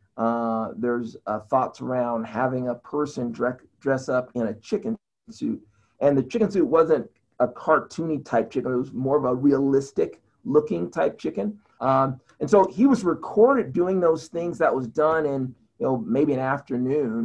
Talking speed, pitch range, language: 175 wpm, 120-145 Hz, English